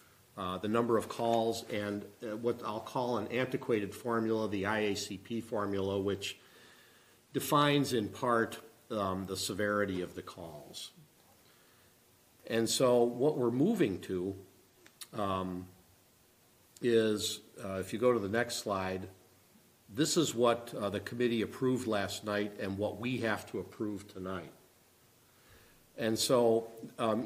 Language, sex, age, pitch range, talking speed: English, male, 50-69, 100-120 Hz, 135 wpm